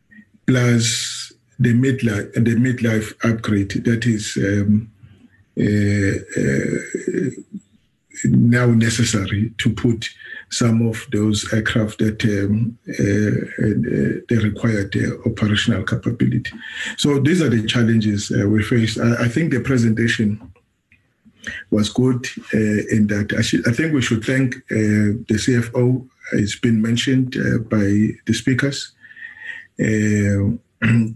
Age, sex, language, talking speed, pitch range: 50-69, male, English, 125 wpm, 105-125 Hz